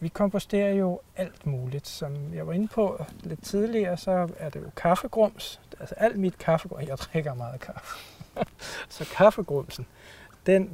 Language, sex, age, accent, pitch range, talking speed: Danish, male, 60-79, native, 150-205 Hz, 155 wpm